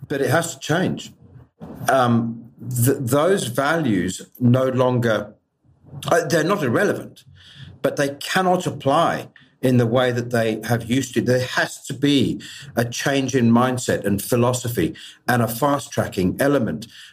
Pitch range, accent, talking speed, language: 115-155 Hz, British, 135 wpm, English